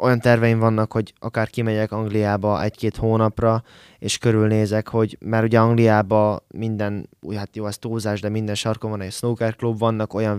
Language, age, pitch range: Hungarian, 20-39, 105-115 Hz